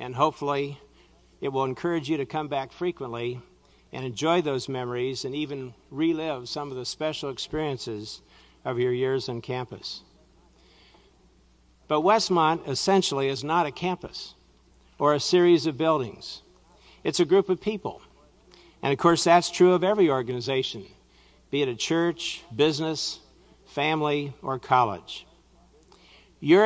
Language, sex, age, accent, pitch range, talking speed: English, male, 60-79, American, 130-170 Hz, 135 wpm